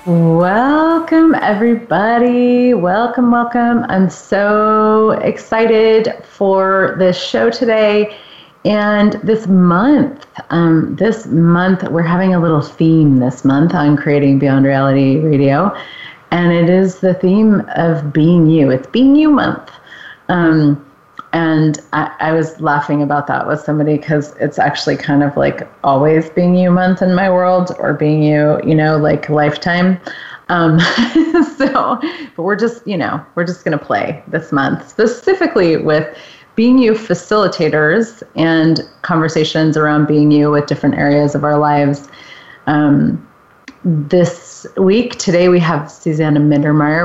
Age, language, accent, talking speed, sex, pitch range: 30-49, English, American, 140 wpm, female, 150-210 Hz